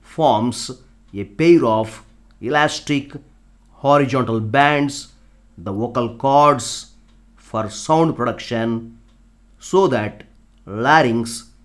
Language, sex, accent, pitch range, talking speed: Telugu, male, native, 110-130 Hz, 80 wpm